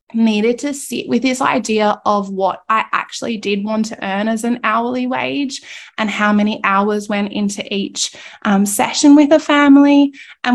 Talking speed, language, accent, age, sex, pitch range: 175 wpm, English, Australian, 20-39, female, 210-250 Hz